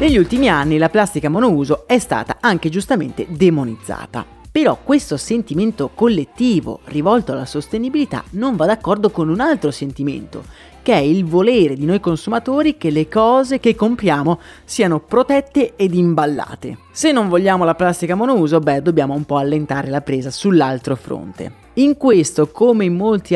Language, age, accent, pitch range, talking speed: Italian, 30-49, native, 145-195 Hz, 155 wpm